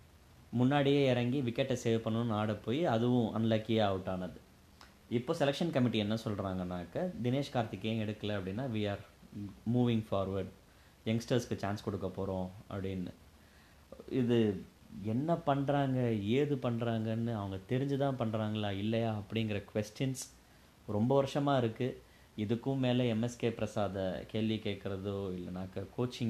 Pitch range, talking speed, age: 95-120 Hz, 115 wpm, 20-39